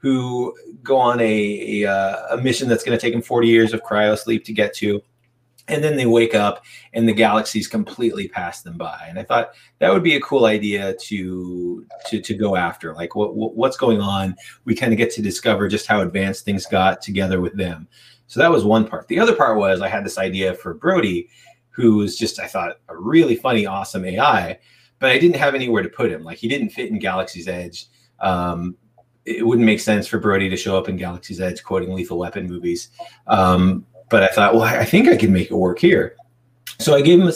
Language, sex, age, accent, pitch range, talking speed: English, male, 30-49, American, 95-115 Hz, 225 wpm